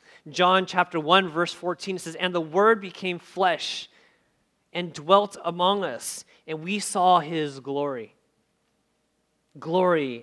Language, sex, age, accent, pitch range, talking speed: English, male, 30-49, American, 150-190 Hz, 125 wpm